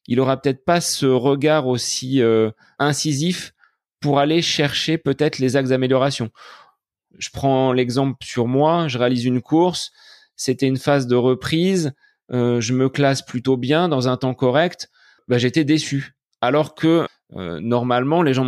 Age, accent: 30-49, French